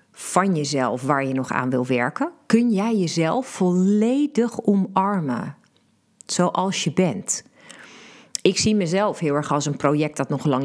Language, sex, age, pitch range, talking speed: Dutch, female, 30-49, 145-195 Hz, 150 wpm